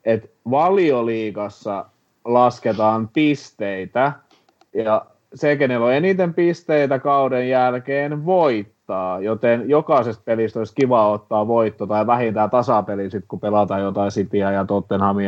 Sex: male